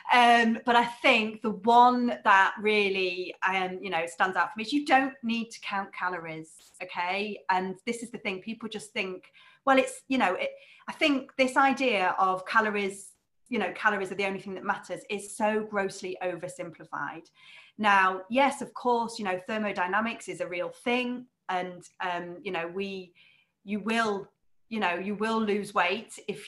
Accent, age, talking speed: British, 30-49, 180 wpm